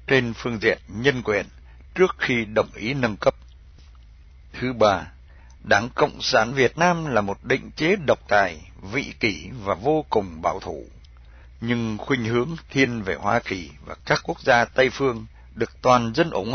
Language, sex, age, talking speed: Vietnamese, male, 60-79, 175 wpm